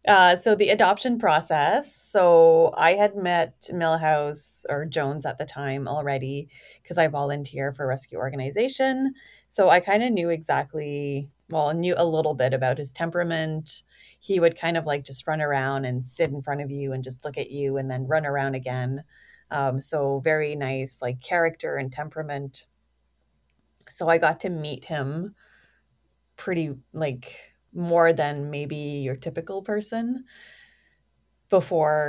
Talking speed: 155 wpm